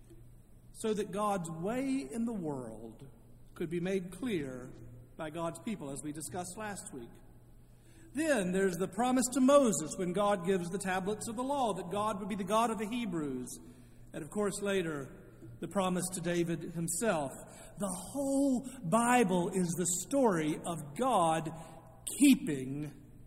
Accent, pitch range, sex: American, 140-210 Hz, male